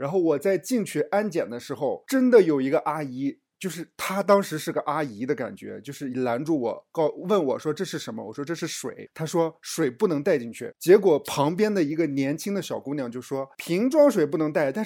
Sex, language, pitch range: male, Chinese, 140-195 Hz